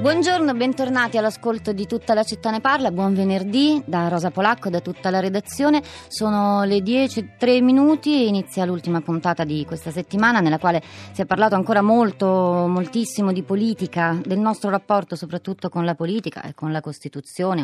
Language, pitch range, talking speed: Italian, 155-195 Hz, 165 wpm